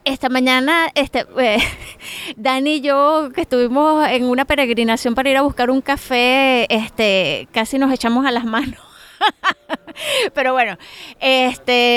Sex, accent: female, American